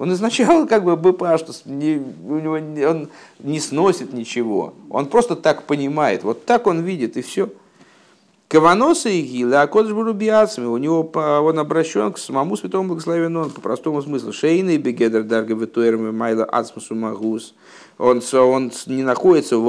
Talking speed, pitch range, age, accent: 135 wpm, 130-175 Hz, 50-69, native